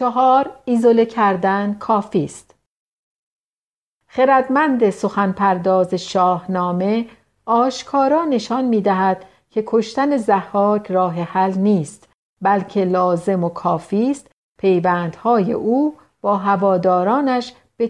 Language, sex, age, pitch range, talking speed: Persian, female, 50-69, 185-235 Hz, 80 wpm